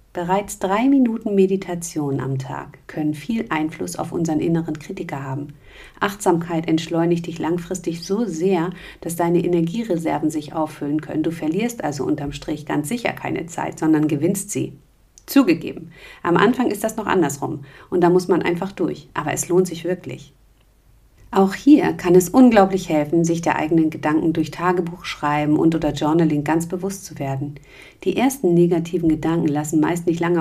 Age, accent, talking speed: 50-69, German, 165 wpm